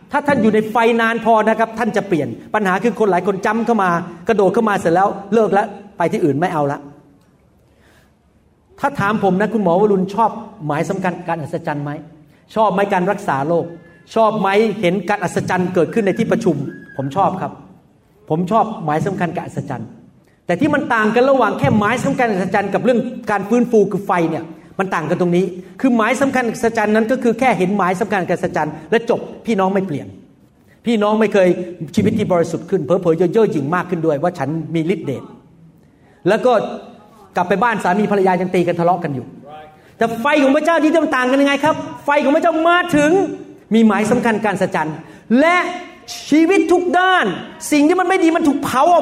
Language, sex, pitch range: Thai, male, 180-245 Hz